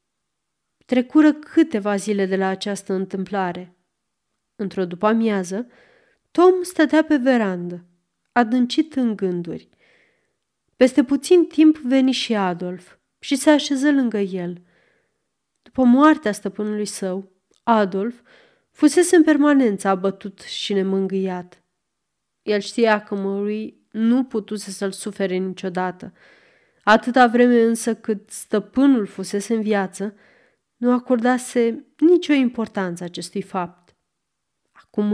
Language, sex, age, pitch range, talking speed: Romanian, female, 30-49, 195-255 Hz, 105 wpm